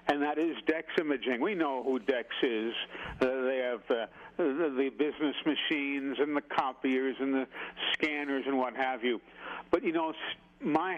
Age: 60-79